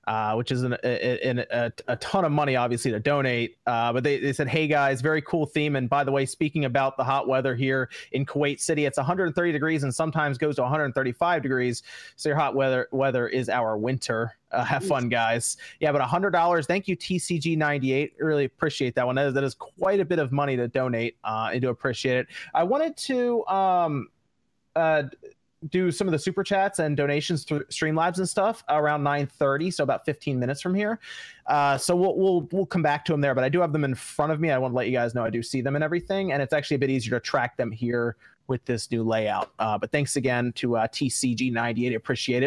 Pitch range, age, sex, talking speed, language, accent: 125-170 Hz, 30-49, male, 235 wpm, English, American